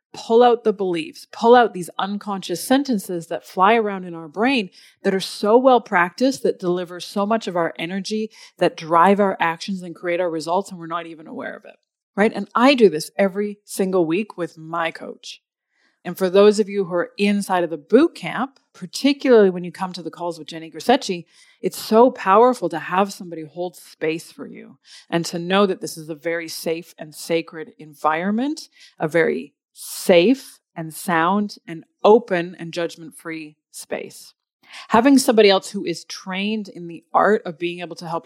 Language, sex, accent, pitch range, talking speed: English, female, American, 165-205 Hz, 190 wpm